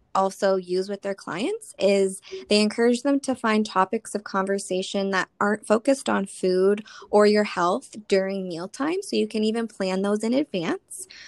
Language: English